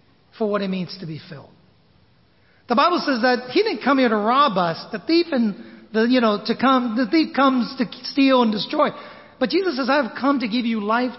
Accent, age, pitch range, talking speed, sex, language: American, 40-59, 195-290 Hz, 190 wpm, male, English